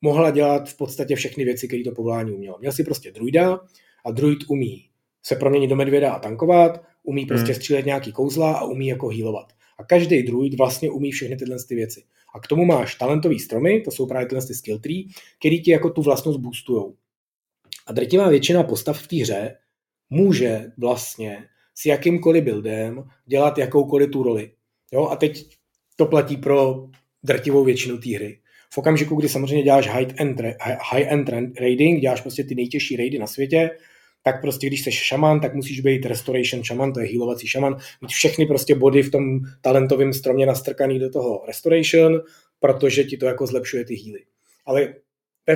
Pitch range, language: 125-155 Hz, Czech